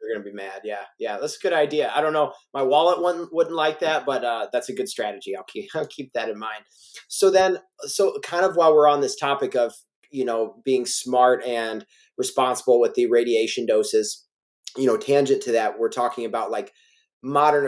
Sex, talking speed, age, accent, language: male, 215 wpm, 30-49, American, English